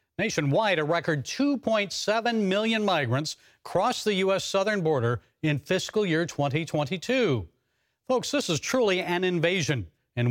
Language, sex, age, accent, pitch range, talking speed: English, male, 40-59, American, 145-195 Hz, 130 wpm